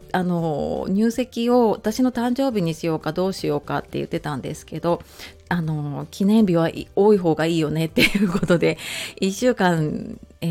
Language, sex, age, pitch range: Japanese, female, 30-49, 170-210 Hz